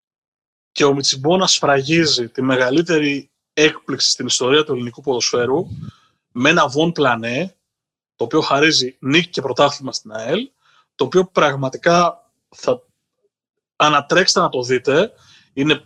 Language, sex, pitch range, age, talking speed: Greek, male, 140-185 Hz, 30-49, 125 wpm